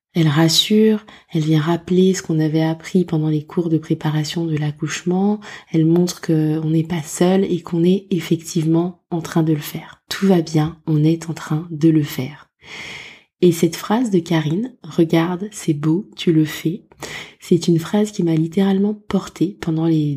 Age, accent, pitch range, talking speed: 20-39, French, 160-185 Hz, 185 wpm